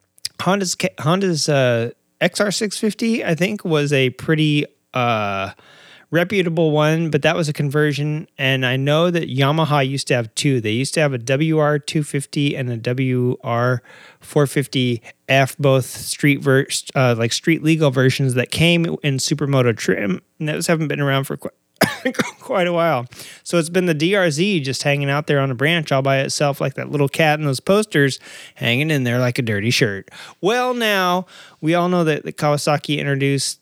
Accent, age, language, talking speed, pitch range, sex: American, 30-49, English, 180 wpm, 130-160 Hz, male